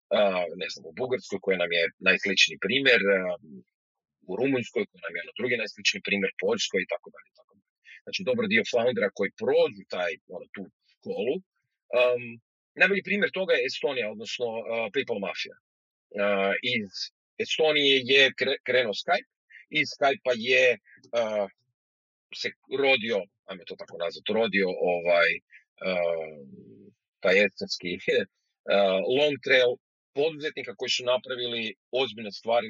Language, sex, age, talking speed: Croatian, male, 40-59, 140 wpm